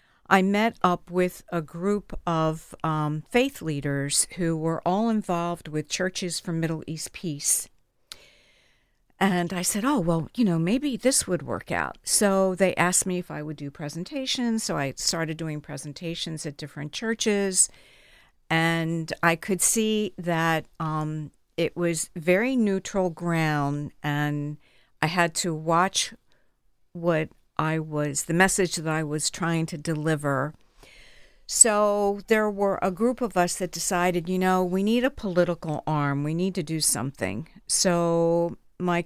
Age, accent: 60-79, American